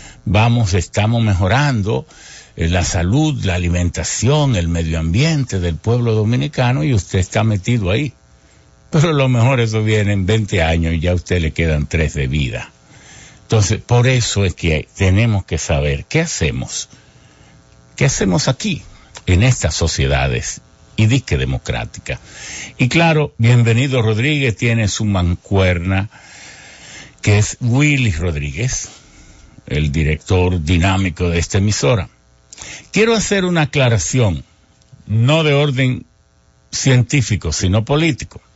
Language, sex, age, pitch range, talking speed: English, male, 60-79, 90-130 Hz, 130 wpm